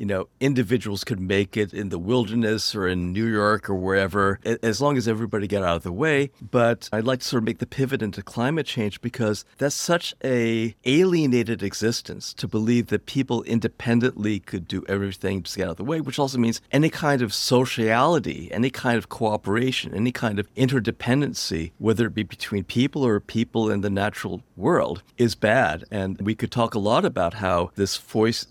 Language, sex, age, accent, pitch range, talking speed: English, male, 50-69, American, 100-125 Hz, 200 wpm